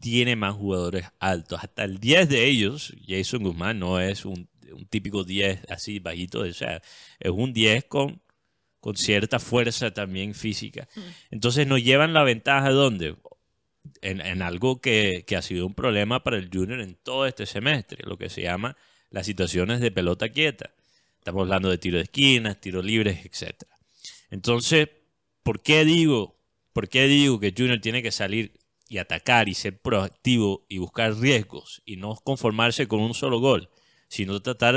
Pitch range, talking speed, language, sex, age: 100-140 Hz, 170 wpm, Spanish, male, 30-49